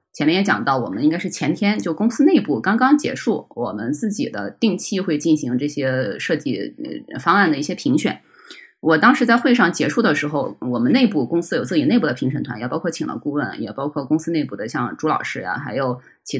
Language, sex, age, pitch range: Chinese, female, 20-39, 150-230 Hz